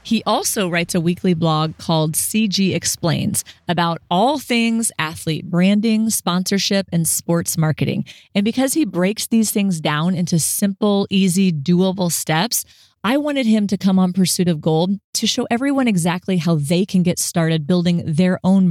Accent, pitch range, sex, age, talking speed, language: American, 170-210 Hz, female, 30-49, 165 wpm, English